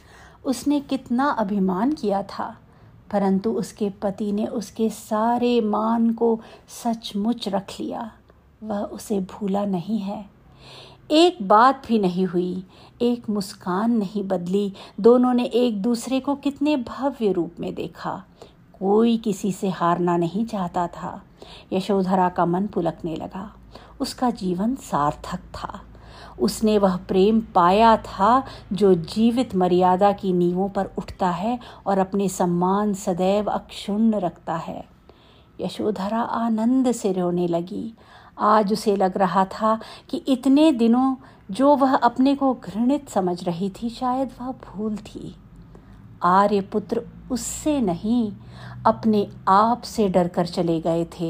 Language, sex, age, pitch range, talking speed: Hindi, female, 50-69, 185-235 Hz, 130 wpm